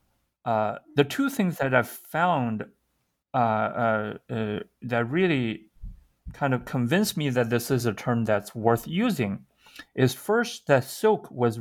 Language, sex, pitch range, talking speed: English, male, 115-145 Hz, 145 wpm